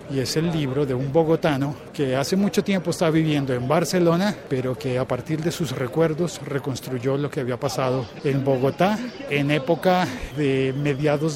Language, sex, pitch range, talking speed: Spanish, male, 130-160 Hz, 175 wpm